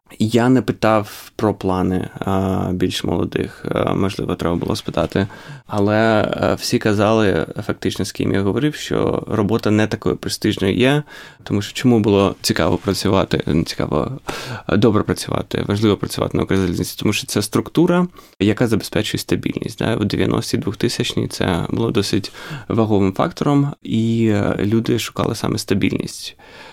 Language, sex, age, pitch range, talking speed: Ukrainian, male, 20-39, 95-115 Hz, 135 wpm